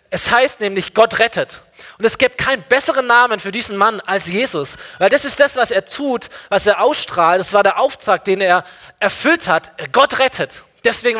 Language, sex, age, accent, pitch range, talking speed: German, male, 20-39, German, 175-235 Hz, 200 wpm